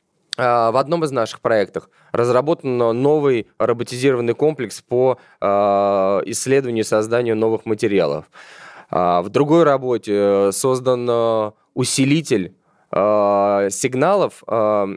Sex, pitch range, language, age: male, 115-150 Hz, Russian, 20-39